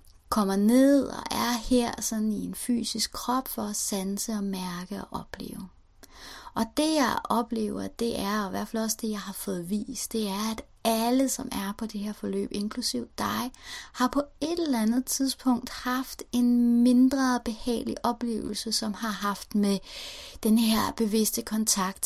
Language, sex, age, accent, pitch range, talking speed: Danish, female, 30-49, native, 205-245 Hz, 175 wpm